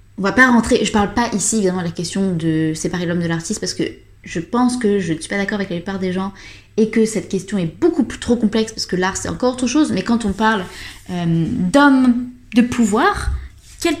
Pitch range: 155-235 Hz